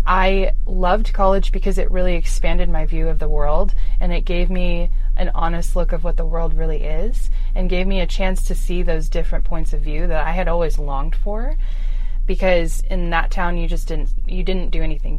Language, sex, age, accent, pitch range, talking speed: English, female, 20-39, American, 155-180 Hz, 215 wpm